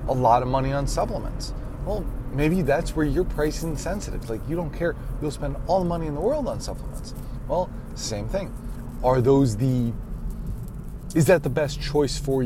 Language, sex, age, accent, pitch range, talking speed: English, male, 30-49, American, 115-140 Hz, 190 wpm